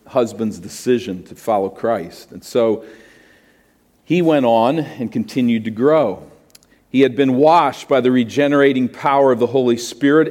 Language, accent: English, American